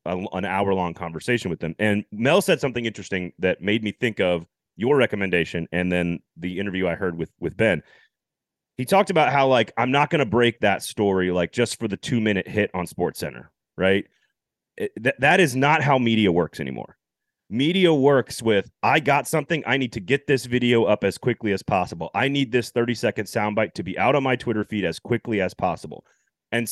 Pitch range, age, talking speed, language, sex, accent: 100-135 Hz, 30-49, 205 wpm, English, male, American